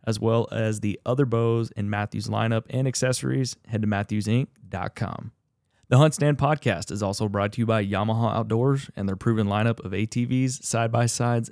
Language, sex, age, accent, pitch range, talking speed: English, male, 30-49, American, 105-125 Hz, 170 wpm